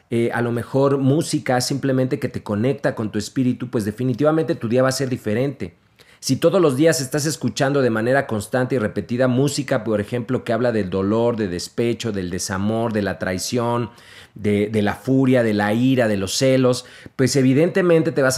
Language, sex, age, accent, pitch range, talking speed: Spanish, male, 40-59, Mexican, 110-140 Hz, 195 wpm